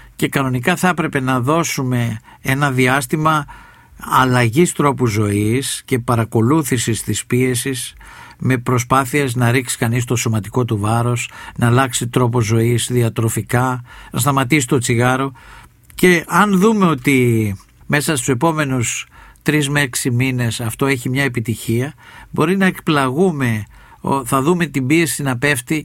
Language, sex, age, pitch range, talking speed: Greek, male, 60-79, 125-160 Hz, 130 wpm